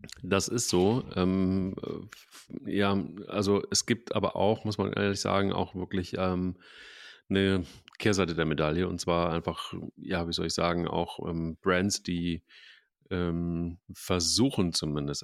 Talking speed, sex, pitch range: 140 wpm, male, 80-95 Hz